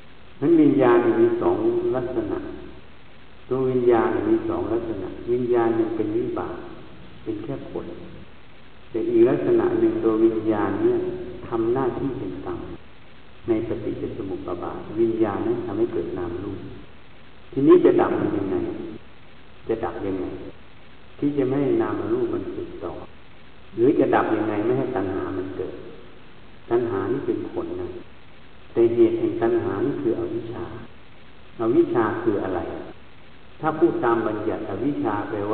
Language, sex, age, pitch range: Thai, male, 60-79, 340-360 Hz